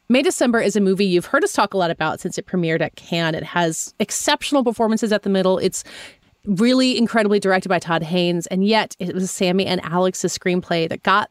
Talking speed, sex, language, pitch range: 220 wpm, female, English, 165-225 Hz